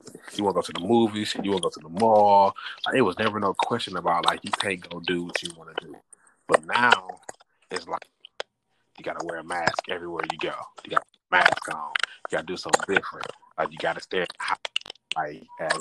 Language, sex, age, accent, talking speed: English, male, 30-49, American, 240 wpm